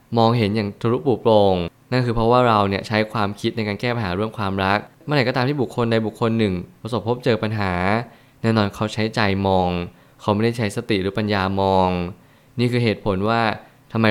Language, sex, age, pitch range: Thai, male, 20-39, 100-125 Hz